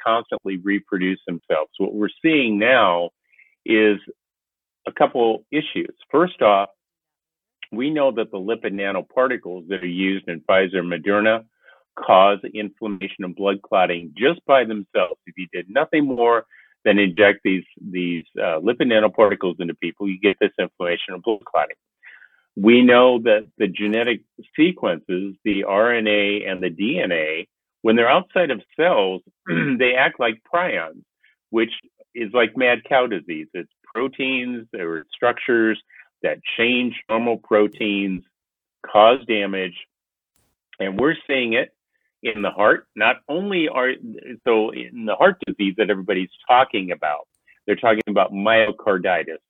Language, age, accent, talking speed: English, 50-69, American, 140 wpm